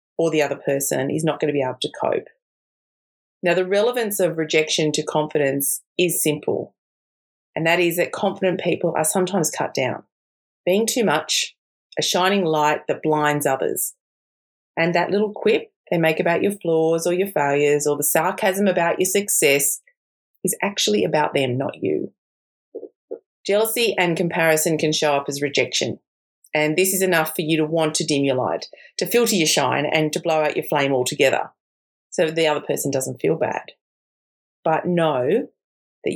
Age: 30-49